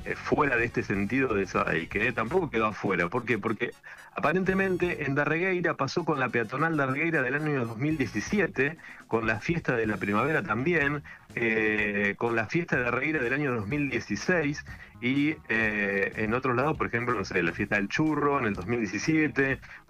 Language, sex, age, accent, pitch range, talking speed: Spanish, male, 40-59, Argentinian, 105-155 Hz, 180 wpm